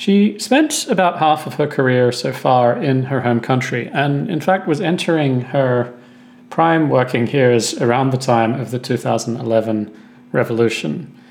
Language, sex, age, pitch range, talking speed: English, male, 40-59, 120-175 Hz, 155 wpm